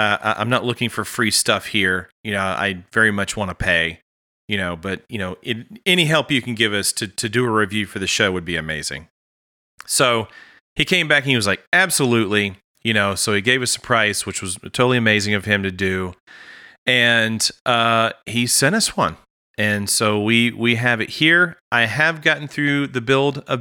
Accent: American